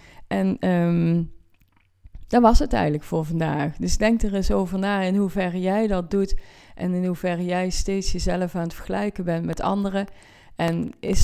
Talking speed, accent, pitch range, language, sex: 170 wpm, Dutch, 155-195 Hz, Dutch, female